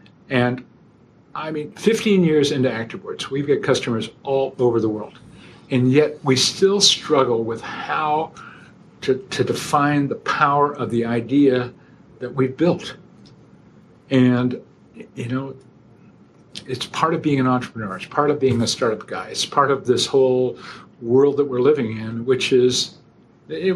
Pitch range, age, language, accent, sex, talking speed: 115-135 Hz, 50-69, English, American, male, 150 wpm